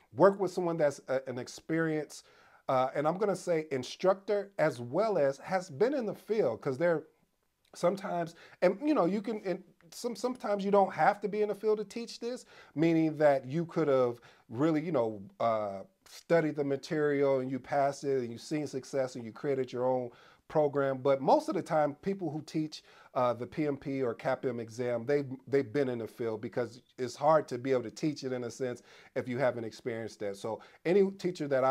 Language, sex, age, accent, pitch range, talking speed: English, male, 40-59, American, 120-165 Hz, 205 wpm